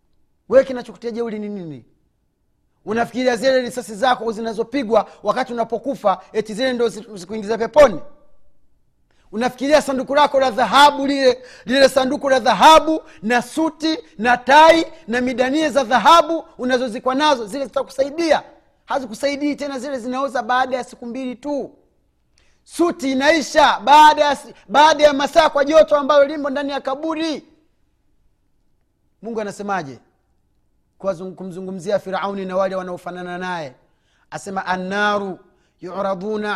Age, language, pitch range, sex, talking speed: 30-49, Swahili, 210-290 Hz, male, 120 wpm